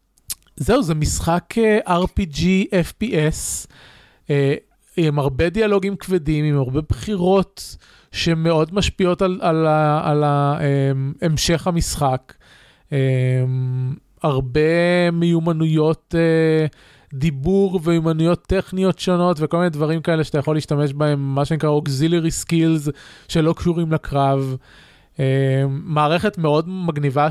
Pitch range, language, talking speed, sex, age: 145-175 Hz, Hebrew, 95 wpm, male, 20-39